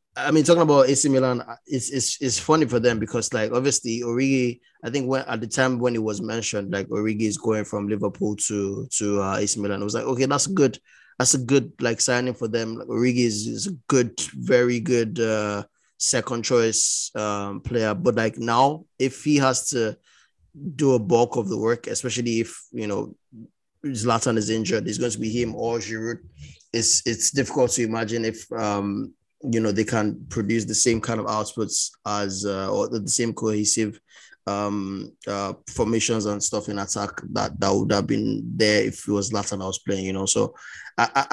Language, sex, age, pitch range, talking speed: English, male, 20-39, 105-125 Hz, 200 wpm